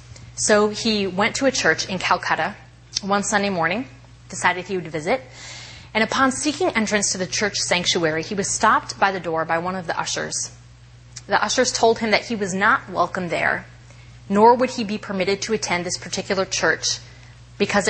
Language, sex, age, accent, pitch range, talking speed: English, female, 30-49, American, 120-200 Hz, 185 wpm